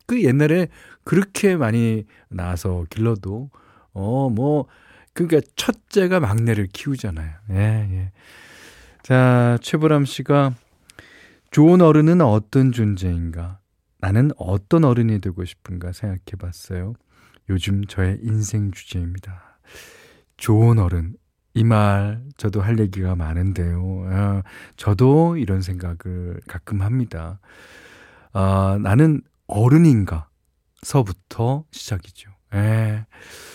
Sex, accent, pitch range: male, native, 90-130 Hz